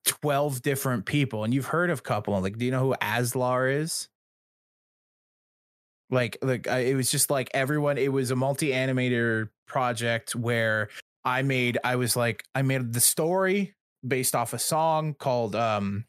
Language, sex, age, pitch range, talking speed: English, male, 20-39, 120-140 Hz, 170 wpm